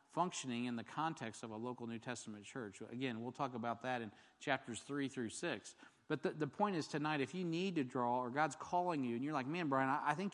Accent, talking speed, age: American, 250 wpm, 40-59